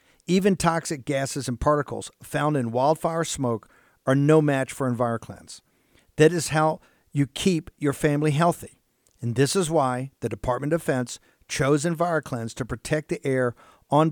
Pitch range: 130-165 Hz